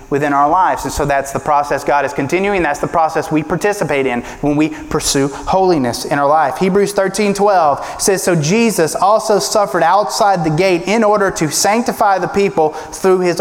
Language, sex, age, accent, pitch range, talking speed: English, male, 30-49, American, 145-185 Hz, 190 wpm